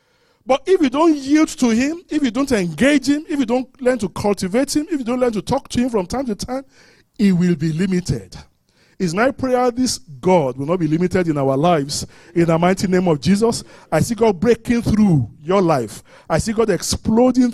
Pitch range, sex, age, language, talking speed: 165-235 Hz, male, 40-59, English, 220 wpm